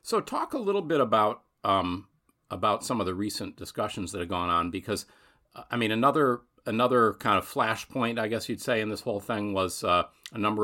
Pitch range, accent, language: 90-105 Hz, American, English